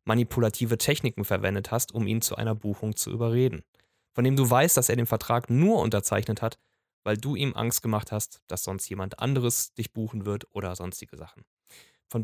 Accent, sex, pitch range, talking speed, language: German, male, 105-130 Hz, 190 wpm, German